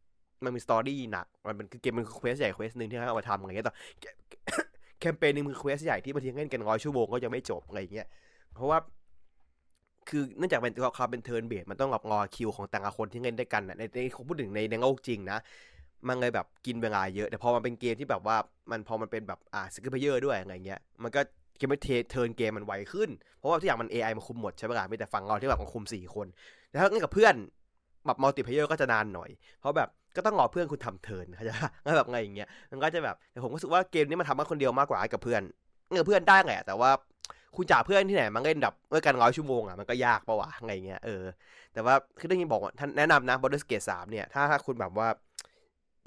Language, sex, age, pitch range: Thai, male, 20-39, 105-135 Hz